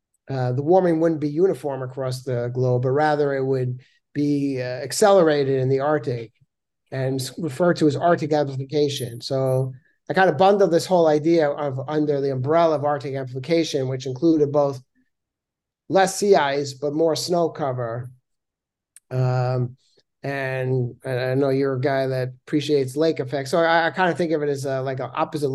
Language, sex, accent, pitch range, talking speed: English, male, American, 130-160 Hz, 170 wpm